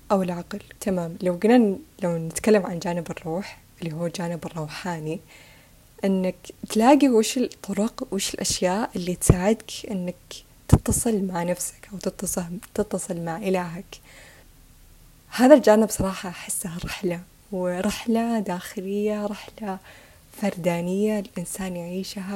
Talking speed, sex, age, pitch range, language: 110 wpm, female, 10-29, 175-210 Hz, Arabic